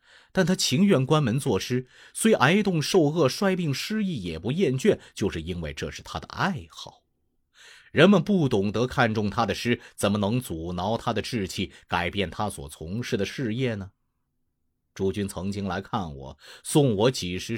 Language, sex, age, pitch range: Chinese, male, 30-49, 90-140 Hz